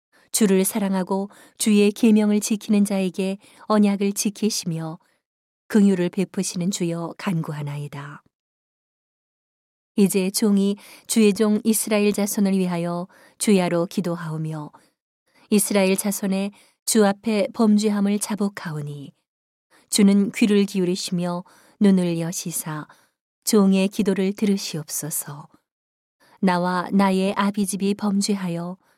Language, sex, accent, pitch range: Korean, female, native, 175-210 Hz